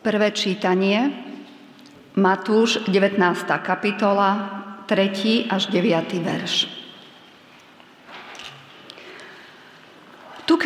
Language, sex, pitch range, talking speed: Slovak, female, 185-235 Hz, 60 wpm